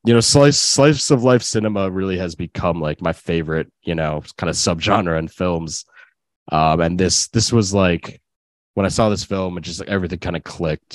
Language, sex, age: English, male, 20-39